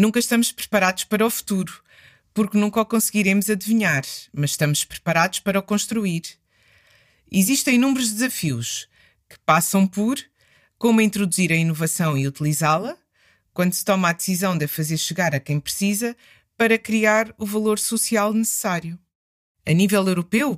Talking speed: 145 wpm